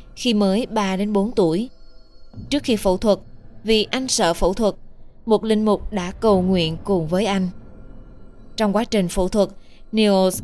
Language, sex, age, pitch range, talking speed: Vietnamese, female, 20-39, 185-220 Hz, 170 wpm